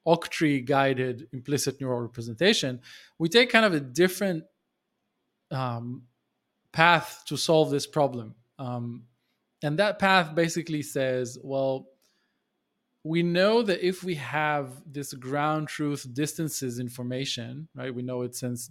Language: English